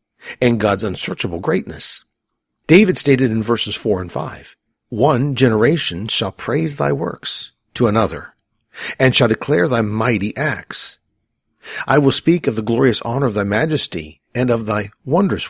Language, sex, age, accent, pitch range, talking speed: English, male, 50-69, American, 105-135 Hz, 150 wpm